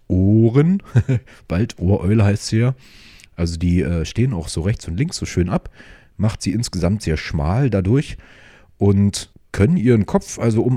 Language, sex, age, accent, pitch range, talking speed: German, male, 30-49, German, 85-110 Hz, 165 wpm